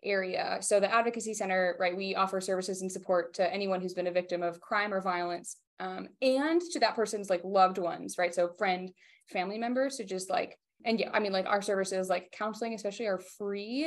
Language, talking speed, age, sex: English, 210 wpm, 20-39, female